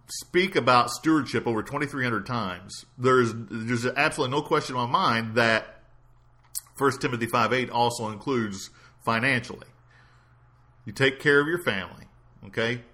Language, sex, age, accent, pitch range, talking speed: English, male, 50-69, American, 115-145 Hz, 140 wpm